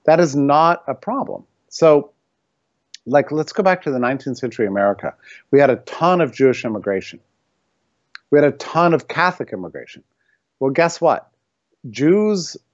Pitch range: 110-145 Hz